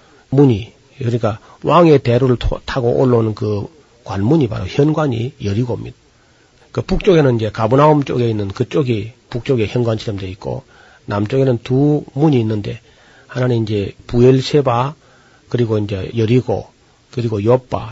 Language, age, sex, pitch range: Korean, 40-59, male, 110-135 Hz